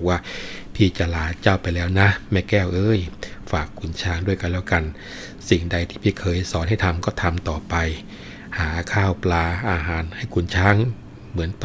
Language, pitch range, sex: Thai, 85-105 Hz, male